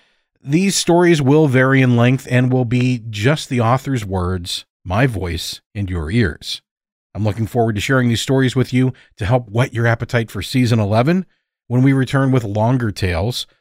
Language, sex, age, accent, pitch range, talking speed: English, male, 40-59, American, 110-140 Hz, 180 wpm